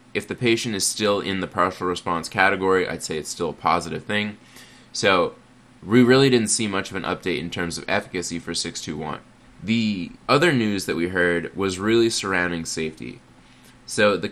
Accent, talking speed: American, 185 wpm